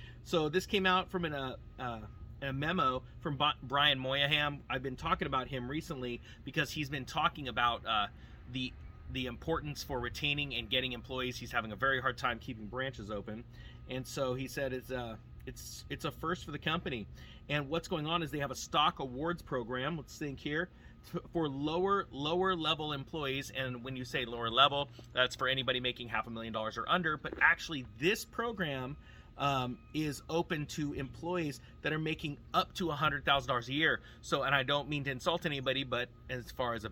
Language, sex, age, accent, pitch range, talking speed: English, male, 30-49, American, 120-155 Hz, 205 wpm